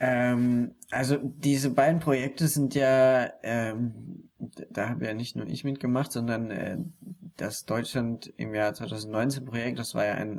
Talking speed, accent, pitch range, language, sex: 150 wpm, German, 110-135 Hz, German, male